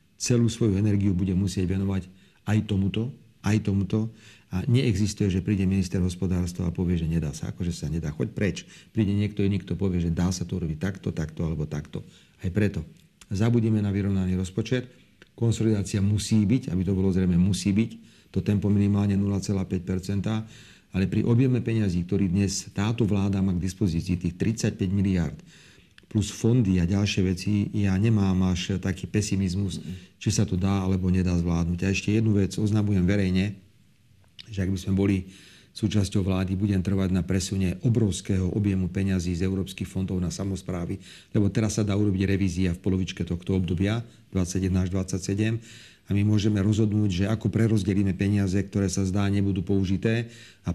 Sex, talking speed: male, 165 wpm